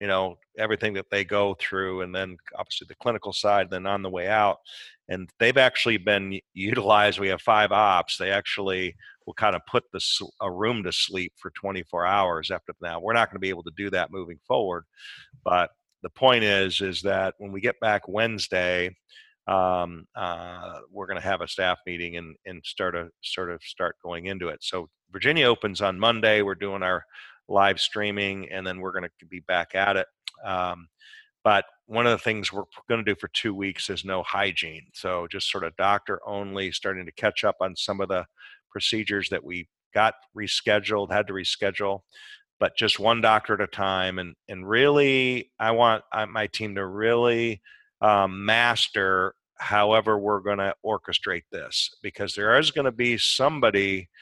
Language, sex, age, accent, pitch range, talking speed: English, male, 40-59, American, 95-110 Hz, 190 wpm